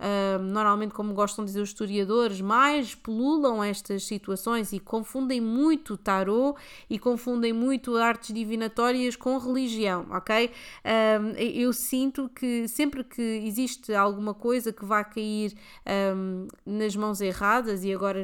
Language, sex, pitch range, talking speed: Portuguese, female, 200-235 Hz, 130 wpm